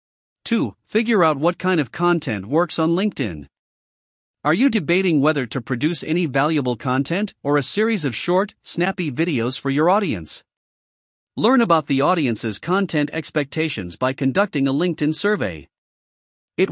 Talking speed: 145 wpm